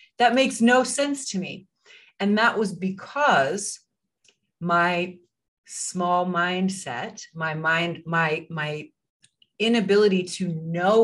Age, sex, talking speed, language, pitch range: 30-49, female, 110 wpm, English, 170-195 Hz